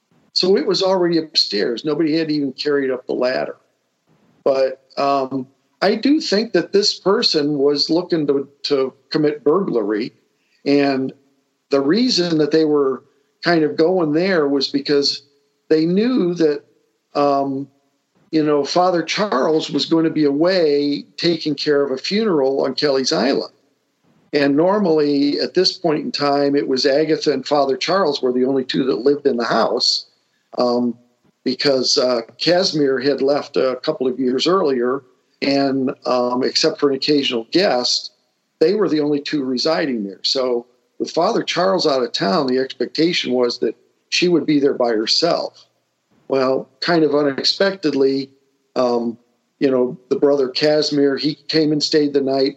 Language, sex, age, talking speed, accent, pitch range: English, male, 50-69, 160 wpm, American, 135-155 Hz